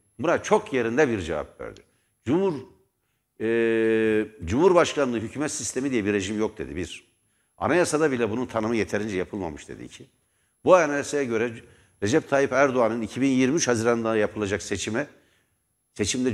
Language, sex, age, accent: Turkish, male, 60-79, native